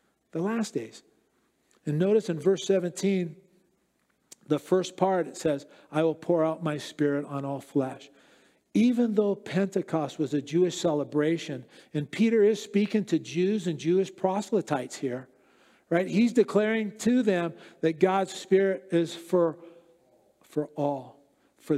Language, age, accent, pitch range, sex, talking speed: English, 50-69, American, 155-210 Hz, male, 145 wpm